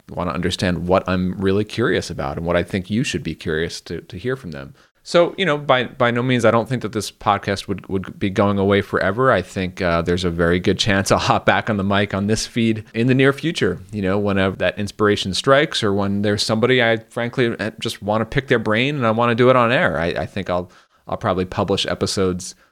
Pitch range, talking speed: 90-115 Hz, 250 wpm